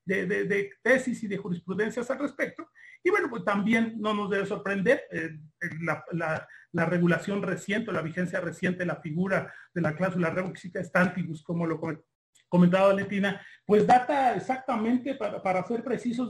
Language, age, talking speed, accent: Spanish, 40-59, 165 wpm, Mexican